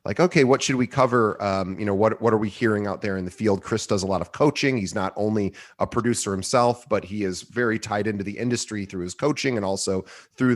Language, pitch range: English, 95-110 Hz